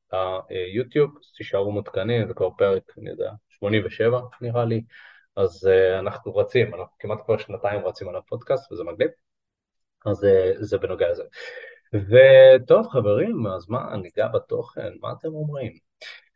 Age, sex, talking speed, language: 20-39, male, 150 wpm, Hebrew